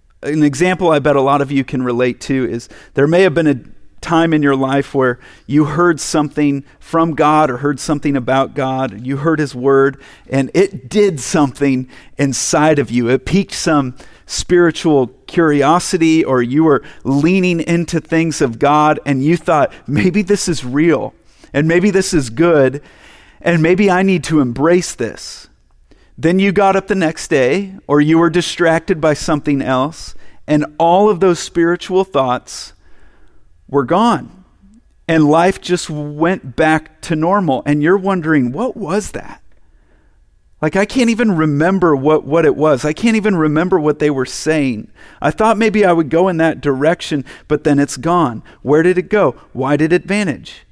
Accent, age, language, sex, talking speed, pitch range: American, 40-59, English, male, 175 wpm, 140-175 Hz